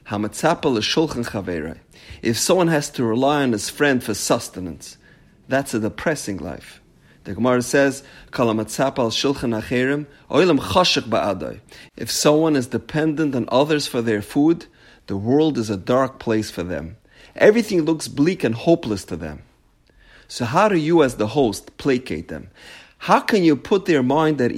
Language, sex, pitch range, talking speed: English, male, 110-160 Hz, 140 wpm